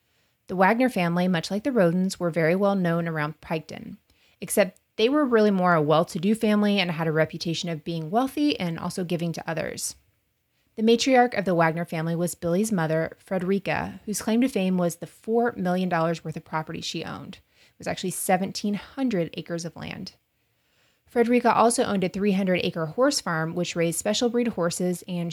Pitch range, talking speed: 165-205 Hz, 180 wpm